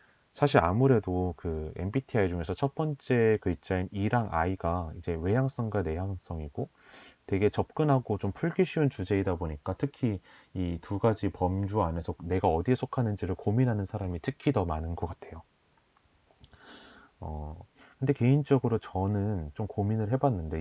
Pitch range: 90-130 Hz